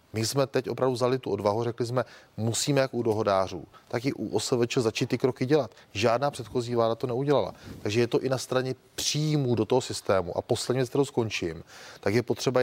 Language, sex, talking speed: Czech, male, 210 wpm